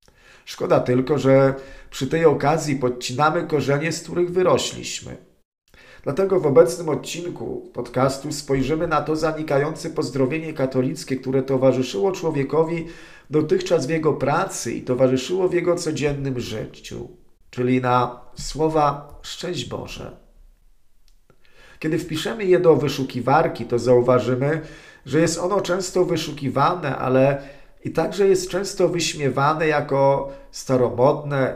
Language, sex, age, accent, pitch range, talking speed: Polish, male, 40-59, native, 130-165 Hz, 115 wpm